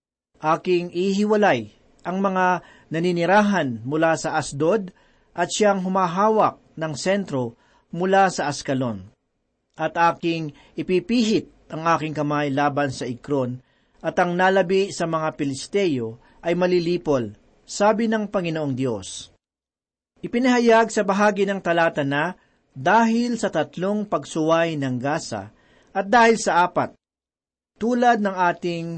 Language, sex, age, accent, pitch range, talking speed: Filipino, male, 40-59, native, 145-200 Hz, 115 wpm